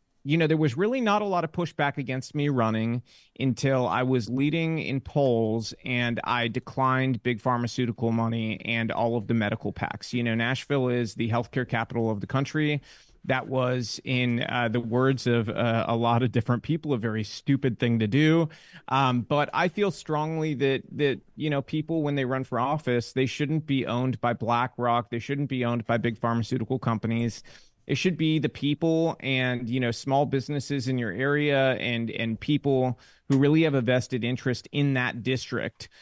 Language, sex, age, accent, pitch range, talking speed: English, male, 30-49, American, 115-140 Hz, 190 wpm